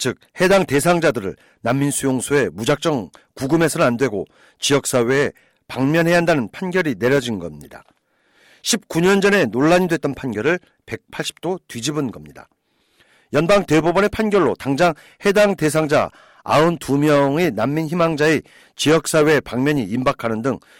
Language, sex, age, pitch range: Korean, male, 40-59, 140-185 Hz